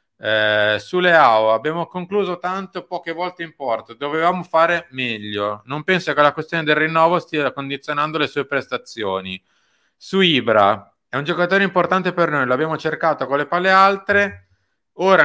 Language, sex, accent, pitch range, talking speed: Italian, male, native, 105-165 Hz, 155 wpm